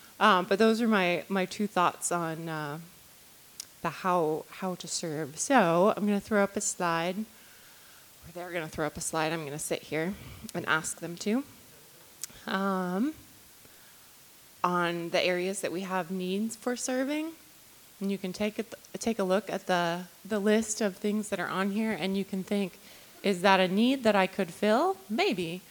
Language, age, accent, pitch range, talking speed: English, 20-39, American, 180-235 Hz, 190 wpm